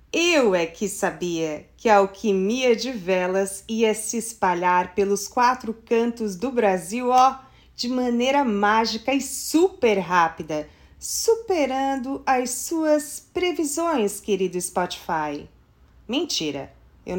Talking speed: 110 wpm